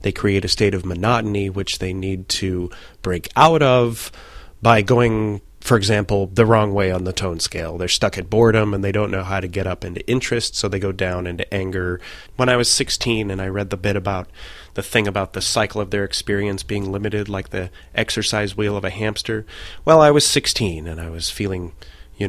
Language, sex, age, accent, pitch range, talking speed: English, male, 30-49, American, 90-105 Hz, 215 wpm